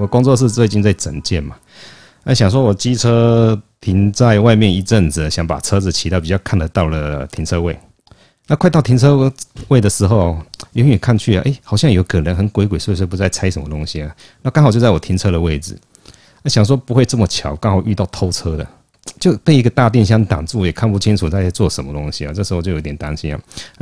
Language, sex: Chinese, male